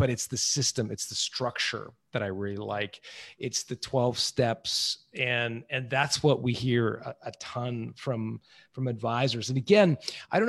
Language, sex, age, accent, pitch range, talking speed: English, male, 40-59, American, 120-155 Hz, 175 wpm